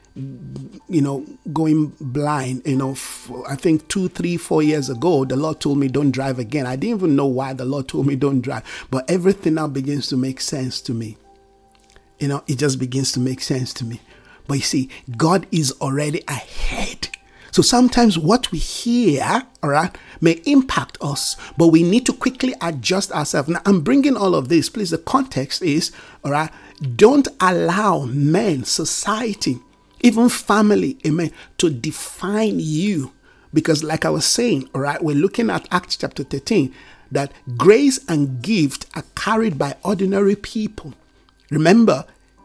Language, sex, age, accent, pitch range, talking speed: English, male, 50-69, Nigerian, 140-205 Hz, 170 wpm